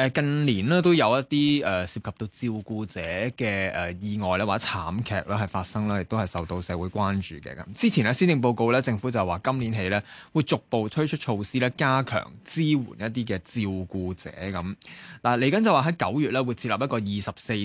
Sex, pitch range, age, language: male, 100-135 Hz, 20-39, Chinese